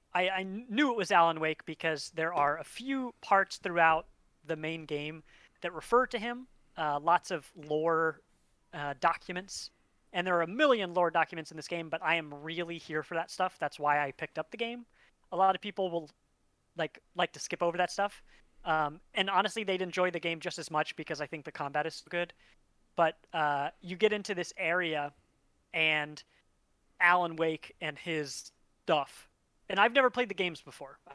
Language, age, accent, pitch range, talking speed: English, 30-49, American, 155-190 Hz, 195 wpm